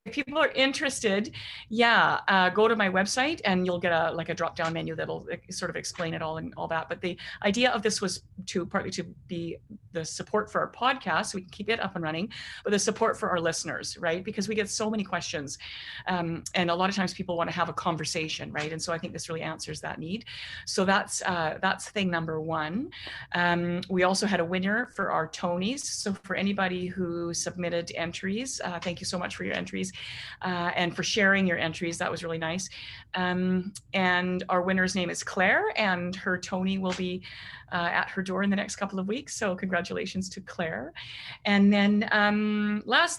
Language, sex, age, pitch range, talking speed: English, female, 30-49, 170-210 Hz, 215 wpm